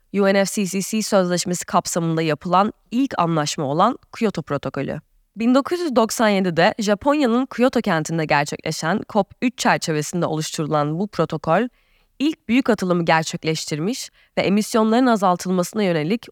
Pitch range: 160-225 Hz